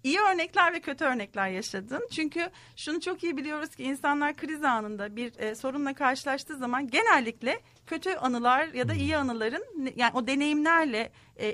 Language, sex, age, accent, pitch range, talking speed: Turkish, female, 40-59, native, 235-295 Hz, 160 wpm